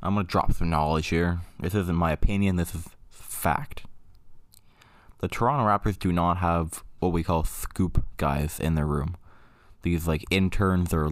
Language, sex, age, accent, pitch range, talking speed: English, male, 20-39, American, 85-100 Hz, 165 wpm